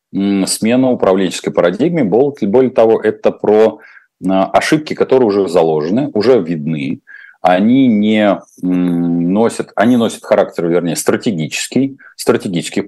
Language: Russian